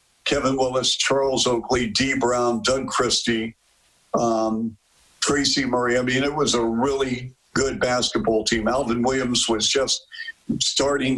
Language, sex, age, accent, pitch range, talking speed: English, male, 50-69, American, 120-140 Hz, 135 wpm